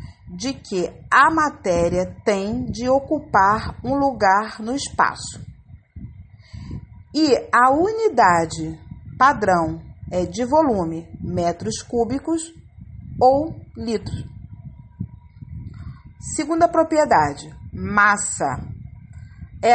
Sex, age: female, 40-59